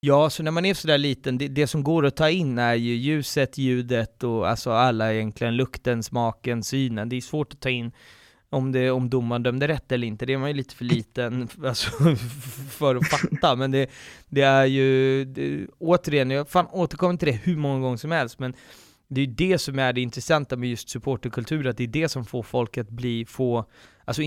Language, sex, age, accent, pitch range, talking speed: Swedish, male, 20-39, native, 125-150 Hz, 225 wpm